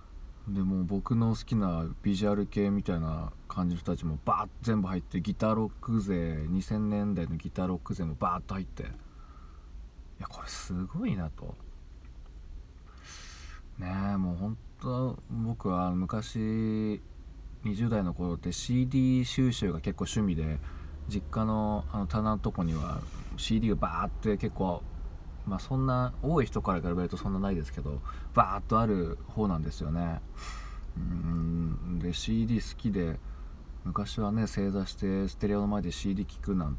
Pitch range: 75-105 Hz